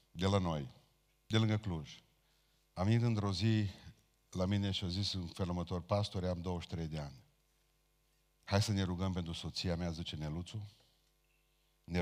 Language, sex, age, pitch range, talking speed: Romanian, male, 50-69, 85-100 Hz, 165 wpm